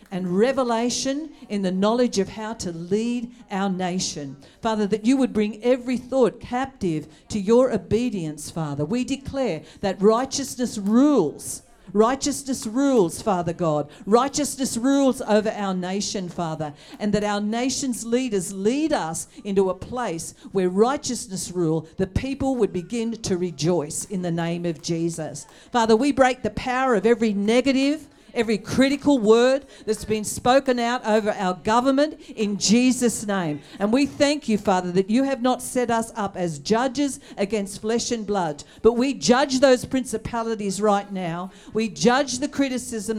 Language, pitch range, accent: English, 195-255 Hz, Australian